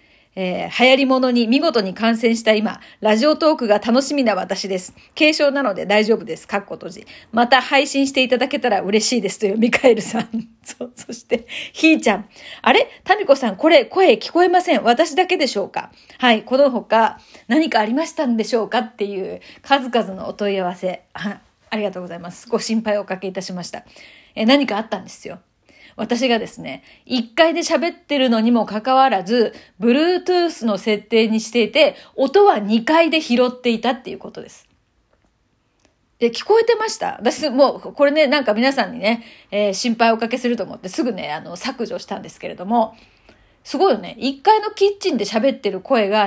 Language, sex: Japanese, female